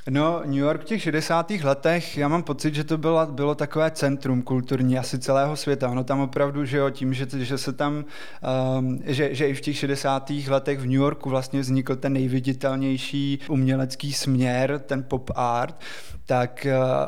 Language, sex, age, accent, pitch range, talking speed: Czech, male, 20-39, native, 130-145 Hz, 175 wpm